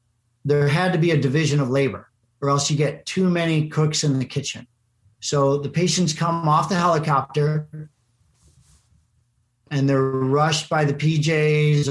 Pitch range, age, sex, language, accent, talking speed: 125-155 Hz, 40-59, male, English, American, 155 wpm